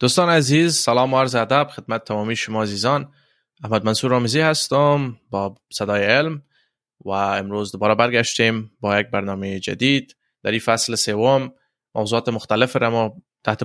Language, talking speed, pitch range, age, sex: Persian, 150 wpm, 105-130 Hz, 20-39, male